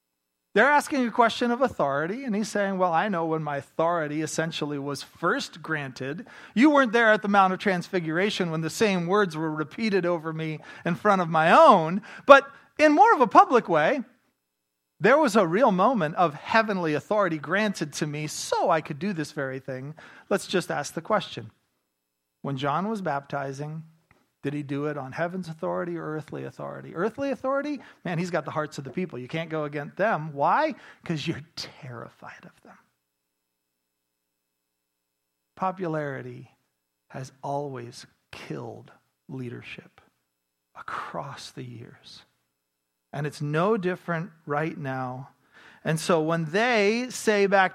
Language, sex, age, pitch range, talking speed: English, male, 40-59, 125-195 Hz, 155 wpm